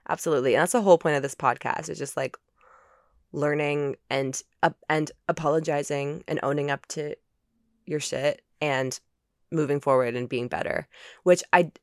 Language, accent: English, American